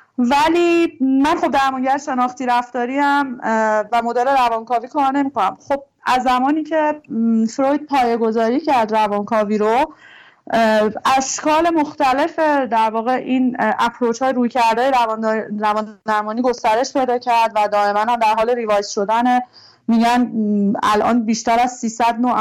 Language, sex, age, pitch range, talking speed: Persian, female, 30-49, 225-265 Hz, 130 wpm